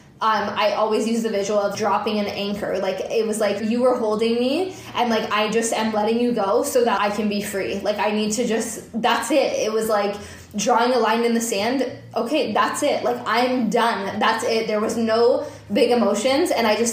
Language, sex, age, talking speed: English, female, 10-29, 225 wpm